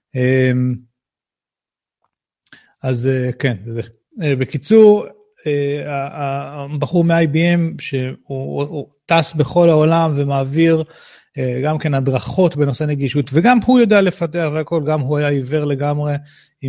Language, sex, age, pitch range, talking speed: Hebrew, male, 30-49, 140-185 Hz, 100 wpm